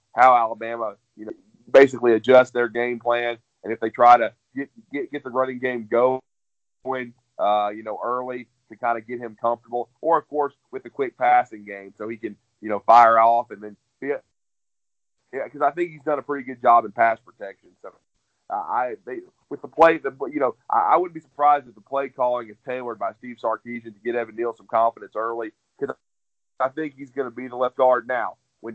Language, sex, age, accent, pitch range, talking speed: English, male, 30-49, American, 115-135 Hz, 220 wpm